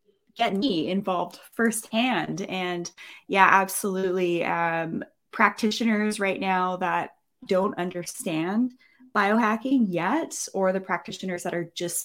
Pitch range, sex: 180-225 Hz, female